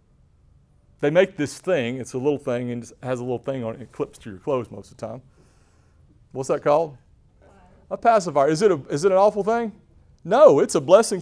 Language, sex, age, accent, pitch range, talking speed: English, male, 40-59, American, 135-205 Hz, 225 wpm